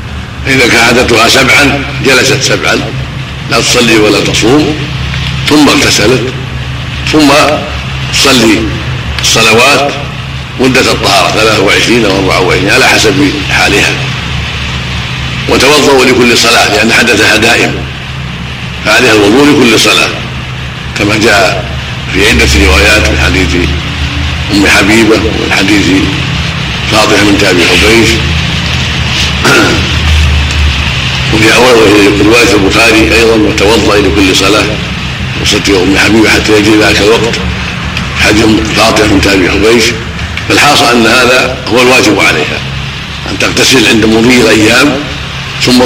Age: 50-69